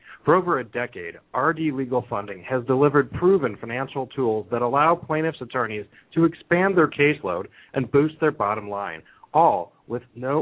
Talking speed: 160 wpm